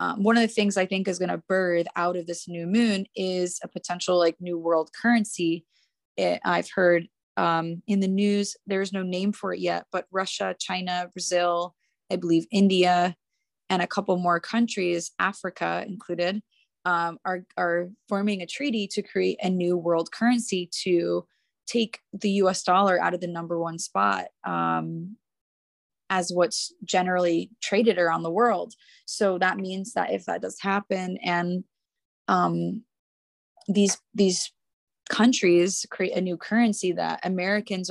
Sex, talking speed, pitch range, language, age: female, 160 wpm, 175-205 Hz, English, 20-39